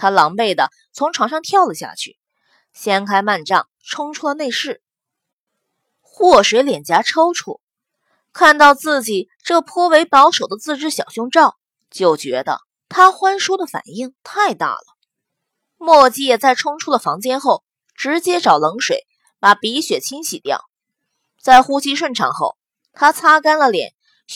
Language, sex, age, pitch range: Chinese, female, 20-39, 240-335 Hz